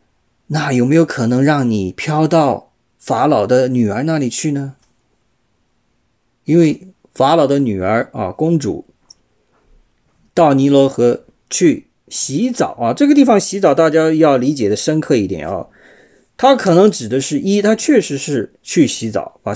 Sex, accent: male, native